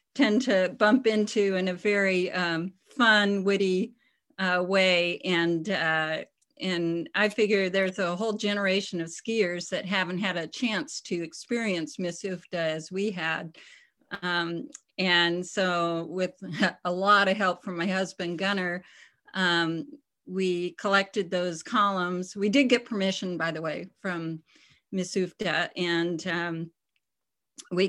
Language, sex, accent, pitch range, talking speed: English, female, American, 165-195 Hz, 135 wpm